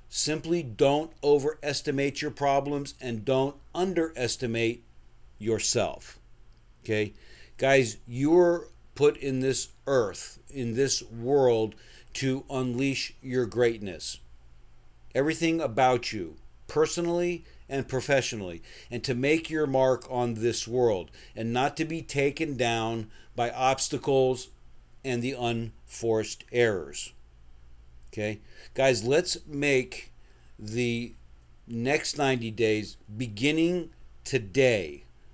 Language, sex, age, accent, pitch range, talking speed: English, male, 50-69, American, 115-145 Hz, 100 wpm